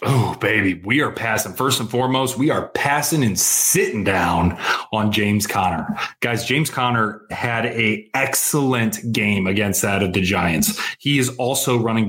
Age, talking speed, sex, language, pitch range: 20-39, 165 wpm, male, English, 105-125 Hz